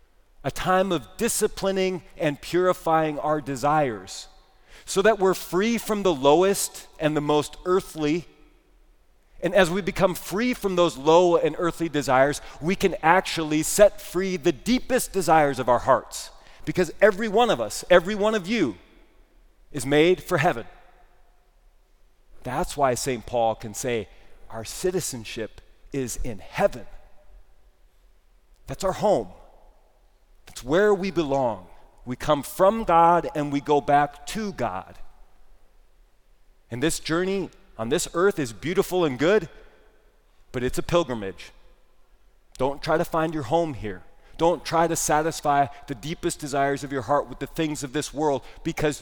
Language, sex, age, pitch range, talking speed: English, male, 30-49, 135-180 Hz, 145 wpm